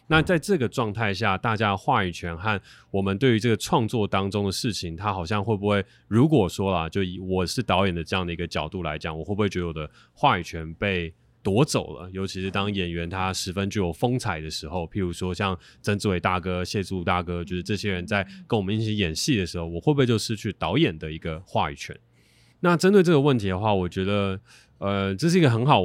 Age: 20-39